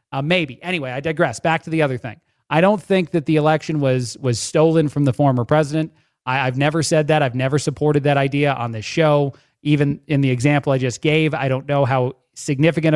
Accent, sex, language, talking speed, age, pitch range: American, male, English, 220 wpm, 30-49, 140-160 Hz